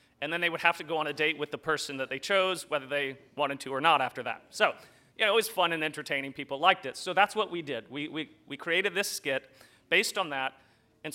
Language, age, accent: English, 30-49, American